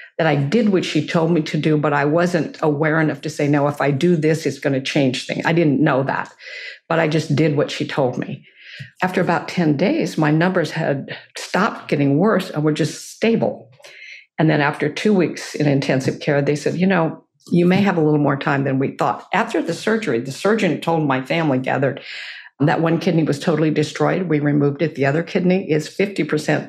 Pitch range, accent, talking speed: 145-175 Hz, American, 220 wpm